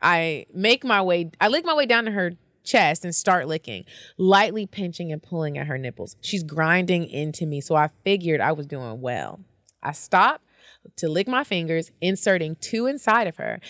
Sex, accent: female, American